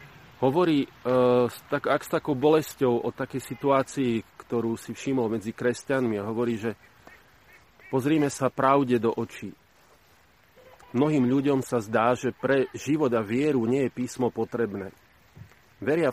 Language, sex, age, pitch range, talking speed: Slovak, male, 40-59, 115-135 Hz, 140 wpm